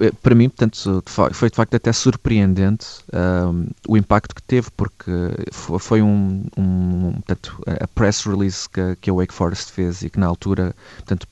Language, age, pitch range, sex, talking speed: Portuguese, 30-49, 90-110 Hz, male, 170 wpm